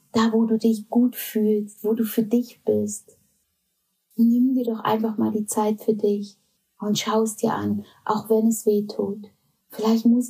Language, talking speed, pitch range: German, 180 wpm, 205-230 Hz